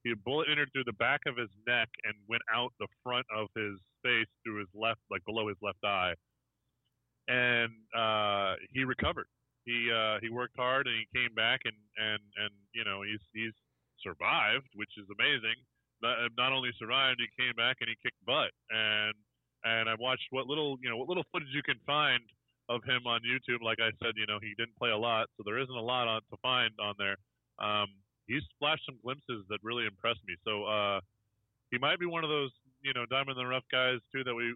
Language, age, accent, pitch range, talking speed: English, 20-39, American, 105-125 Hz, 210 wpm